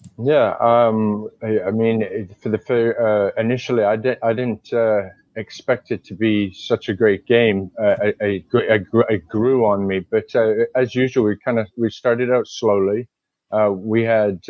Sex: male